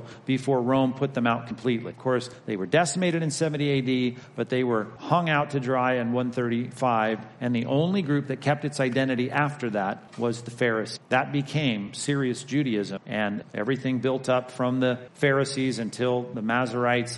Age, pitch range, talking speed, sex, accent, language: 40-59, 120-150 Hz, 175 wpm, male, American, English